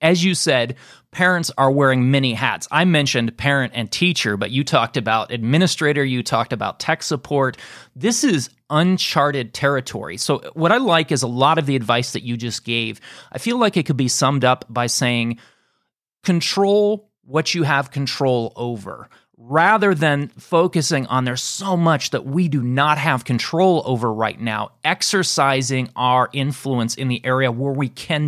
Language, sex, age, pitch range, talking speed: English, male, 30-49, 125-165 Hz, 175 wpm